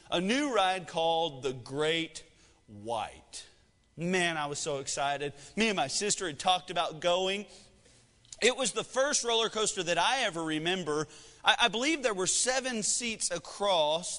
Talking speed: 160 wpm